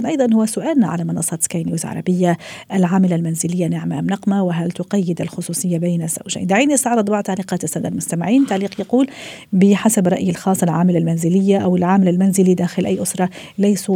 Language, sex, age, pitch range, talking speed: Arabic, female, 40-59, 175-200 Hz, 160 wpm